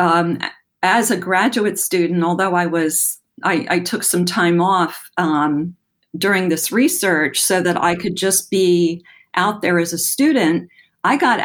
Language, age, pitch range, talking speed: English, 50-69, 165-195 Hz, 160 wpm